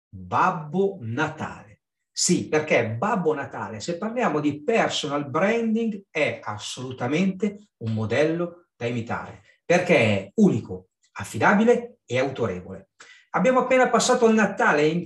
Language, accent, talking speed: Italian, native, 120 wpm